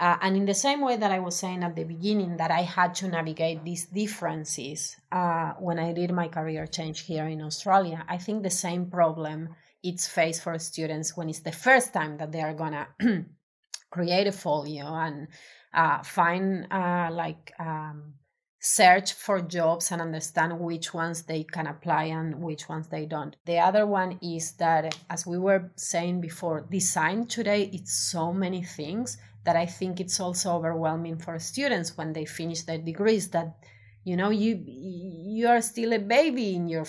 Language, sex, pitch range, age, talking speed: English, female, 165-195 Hz, 30-49, 185 wpm